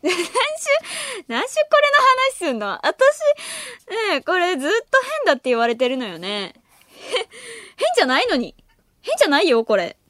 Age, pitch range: 20-39, 225-320 Hz